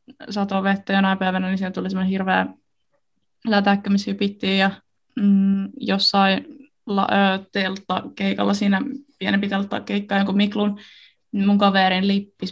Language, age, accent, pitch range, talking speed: Finnish, 20-39, native, 195-215 Hz, 130 wpm